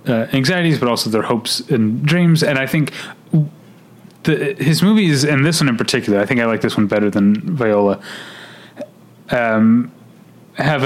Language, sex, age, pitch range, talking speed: English, male, 30-49, 105-140 Hz, 165 wpm